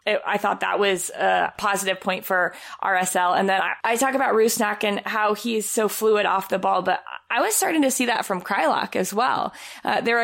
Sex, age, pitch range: female, 20-39, 185-225 Hz